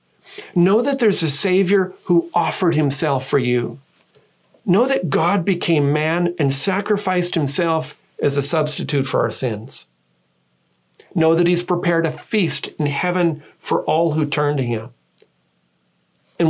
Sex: male